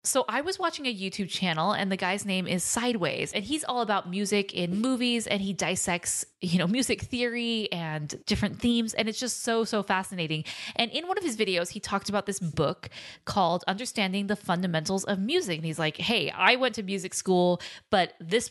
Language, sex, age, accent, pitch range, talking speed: English, female, 20-39, American, 170-215 Hz, 210 wpm